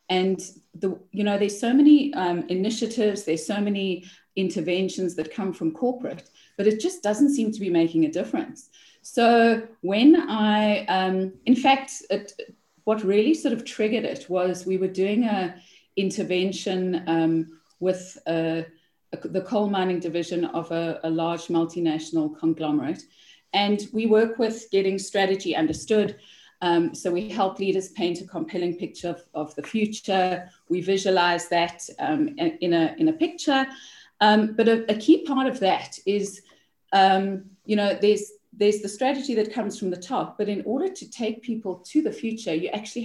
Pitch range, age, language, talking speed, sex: 175-225 Hz, 30-49, English, 165 wpm, female